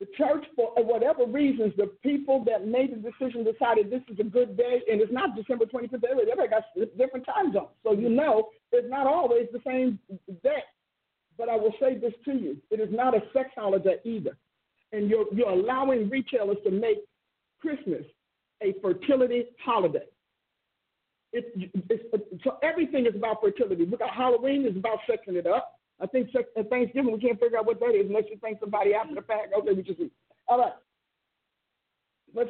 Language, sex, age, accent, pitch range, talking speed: English, male, 50-69, American, 225-280 Hz, 185 wpm